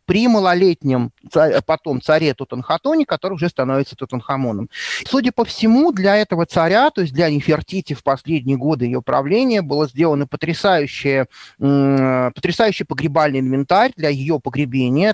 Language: Russian